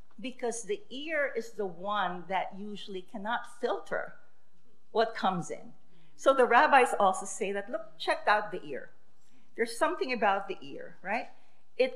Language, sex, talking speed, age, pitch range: English, female, 155 wpm, 50-69, 195-255 Hz